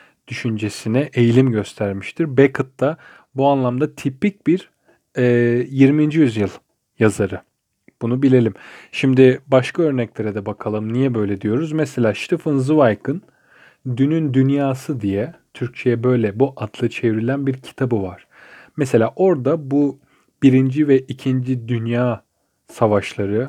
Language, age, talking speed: Turkish, 40-59, 110 wpm